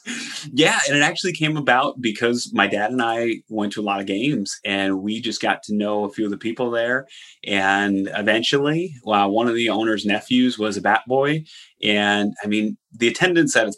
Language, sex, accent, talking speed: English, male, American, 210 wpm